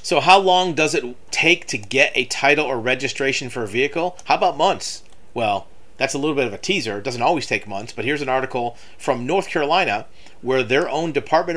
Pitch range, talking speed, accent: 120-150 Hz, 220 wpm, American